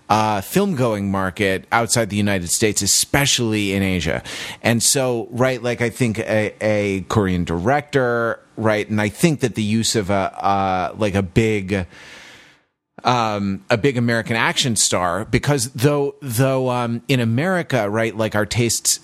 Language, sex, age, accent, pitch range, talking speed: English, male, 30-49, American, 95-120 Hz, 160 wpm